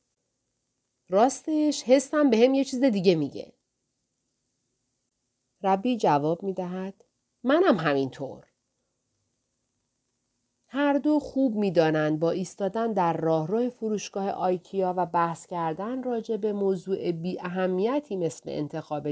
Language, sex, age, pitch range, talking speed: Persian, female, 40-59, 160-240 Hz, 100 wpm